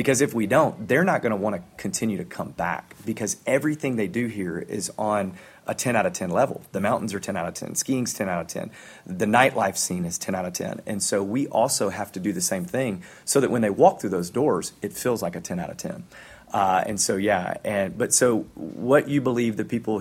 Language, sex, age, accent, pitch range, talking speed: English, male, 30-49, American, 100-125 Hz, 255 wpm